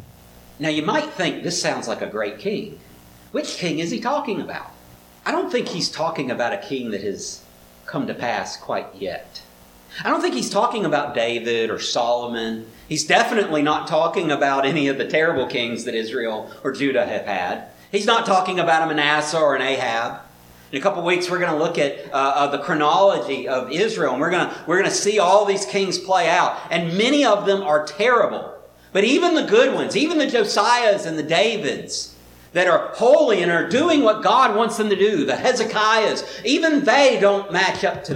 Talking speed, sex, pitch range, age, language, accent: 200 wpm, male, 140-220 Hz, 50-69, English, American